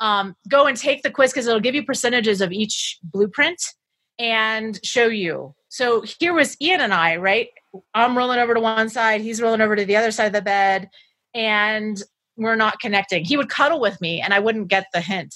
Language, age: English, 30-49